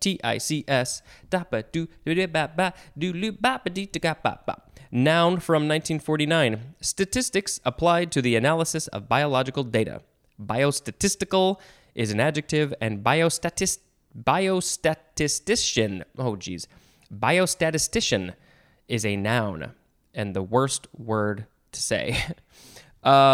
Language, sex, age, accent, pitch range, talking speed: English, male, 20-39, American, 115-150 Hz, 80 wpm